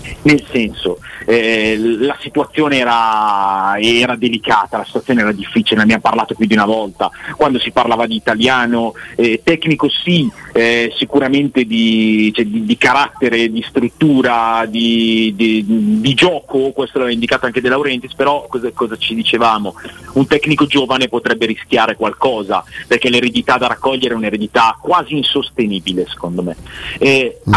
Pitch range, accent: 115-140 Hz, native